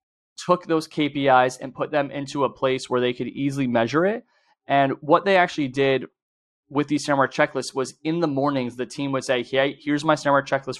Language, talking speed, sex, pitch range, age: English, 215 wpm, male, 120-145 Hz, 20-39